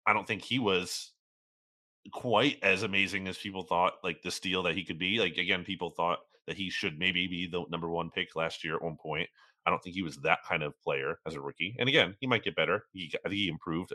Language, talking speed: English, 255 wpm